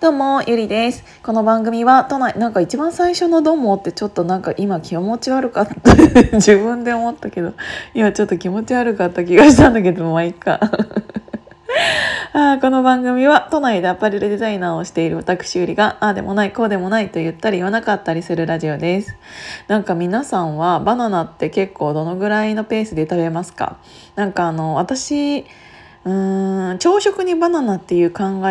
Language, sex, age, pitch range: Japanese, female, 20-39, 175-230 Hz